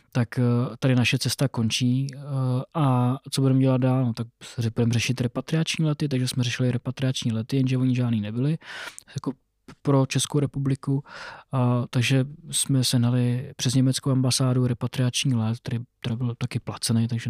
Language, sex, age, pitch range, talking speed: Czech, male, 20-39, 125-140 Hz, 155 wpm